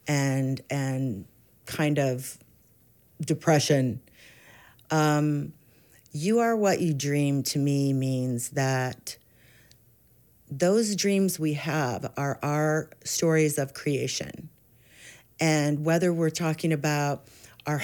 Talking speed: 100 wpm